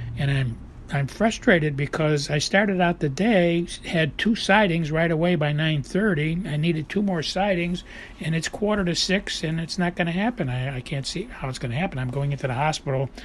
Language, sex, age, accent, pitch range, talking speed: English, male, 60-79, American, 135-180 Hz, 215 wpm